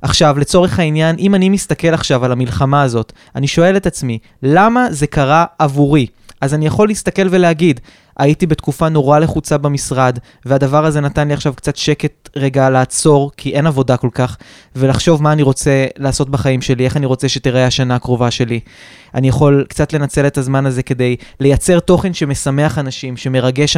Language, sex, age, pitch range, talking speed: Hebrew, male, 20-39, 135-165 Hz, 175 wpm